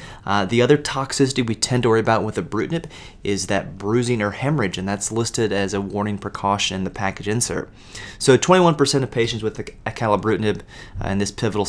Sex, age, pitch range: male, 30-49, 100-115 Hz